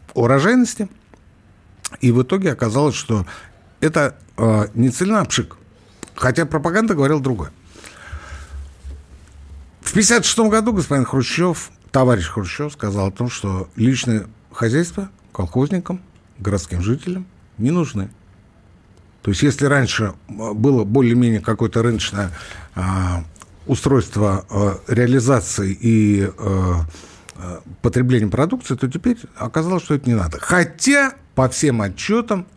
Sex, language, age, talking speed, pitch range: male, Russian, 60-79, 110 wpm, 95-150 Hz